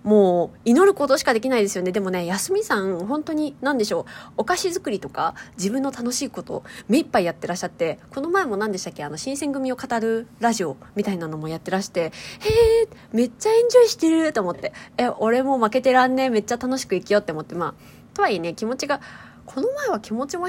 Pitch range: 175-265 Hz